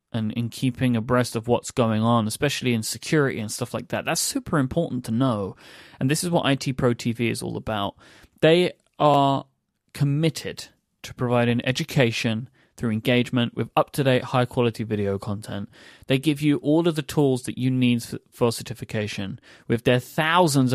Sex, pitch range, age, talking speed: male, 115-145 Hz, 30-49, 175 wpm